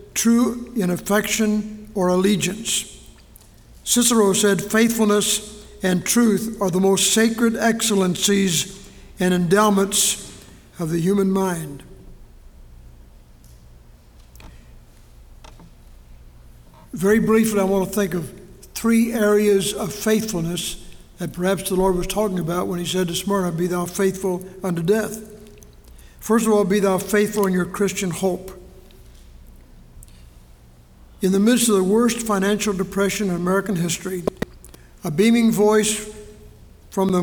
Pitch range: 165-205 Hz